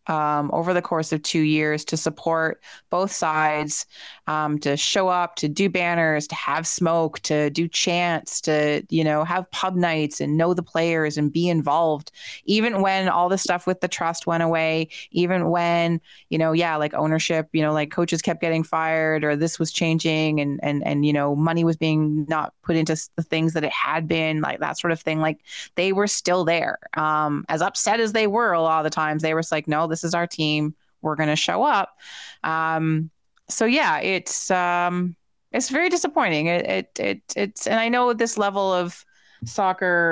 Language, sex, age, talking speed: English, female, 20-39, 200 wpm